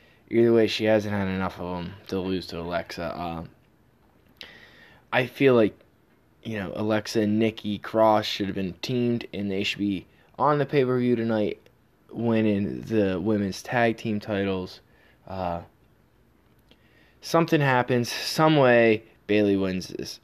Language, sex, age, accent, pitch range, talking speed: English, male, 20-39, American, 95-120 Hz, 140 wpm